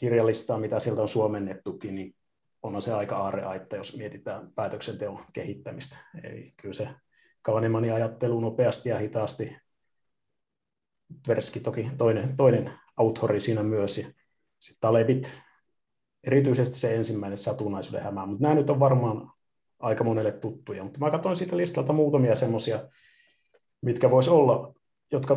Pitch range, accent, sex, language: 110-135 Hz, native, male, Finnish